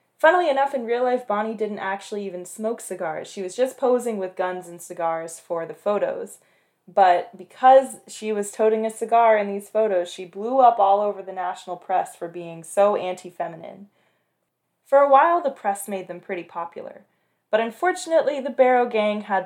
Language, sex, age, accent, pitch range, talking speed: English, female, 20-39, American, 180-230 Hz, 180 wpm